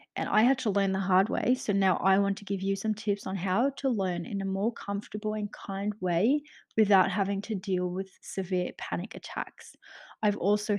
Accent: Australian